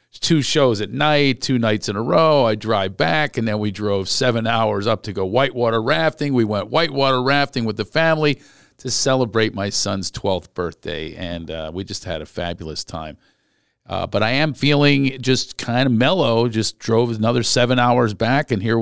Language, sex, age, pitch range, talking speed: English, male, 50-69, 100-125 Hz, 195 wpm